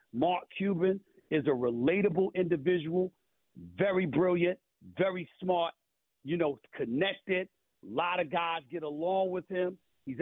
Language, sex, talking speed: English, male, 130 wpm